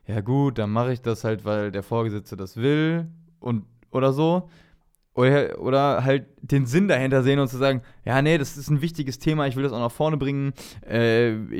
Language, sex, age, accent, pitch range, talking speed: German, male, 20-39, German, 115-135 Hz, 205 wpm